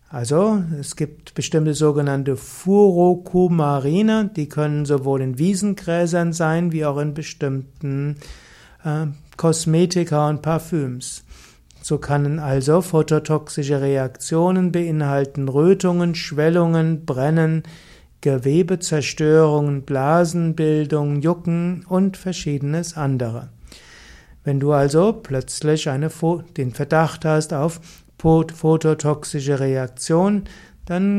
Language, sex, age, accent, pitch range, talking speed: German, male, 60-79, German, 145-170 Hz, 90 wpm